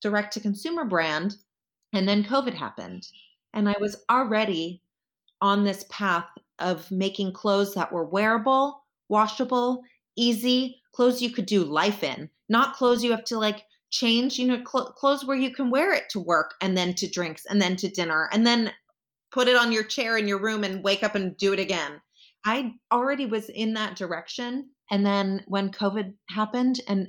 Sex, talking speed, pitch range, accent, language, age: female, 185 wpm, 195-250 Hz, American, English, 30-49